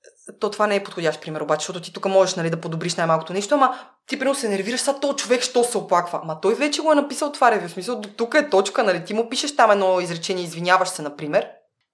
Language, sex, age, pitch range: Bulgarian, female, 20-39, 170-225 Hz